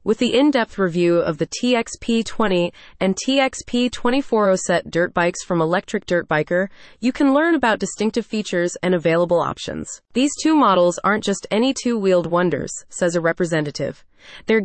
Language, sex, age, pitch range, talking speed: English, female, 20-39, 175-230 Hz, 150 wpm